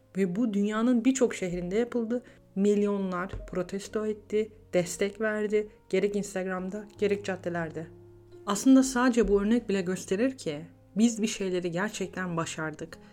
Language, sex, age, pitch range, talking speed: Turkish, female, 40-59, 175-220 Hz, 125 wpm